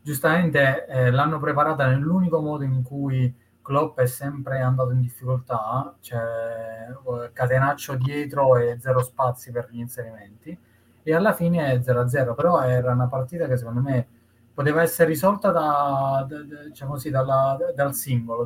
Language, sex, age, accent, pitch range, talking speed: Italian, male, 20-39, native, 120-145 Hz, 130 wpm